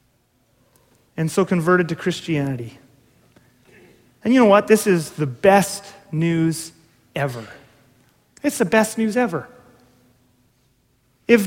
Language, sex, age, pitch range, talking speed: English, male, 30-49, 155-225 Hz, 110 wpm